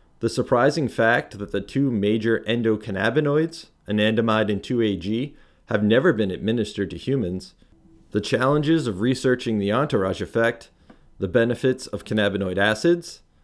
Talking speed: 130 wpm